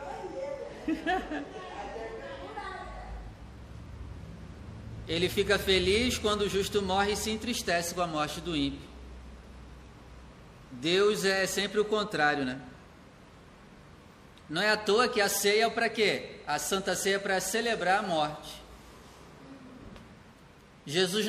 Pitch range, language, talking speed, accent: 140-210 Hz, Portuguese, 115 wpm, Brazilian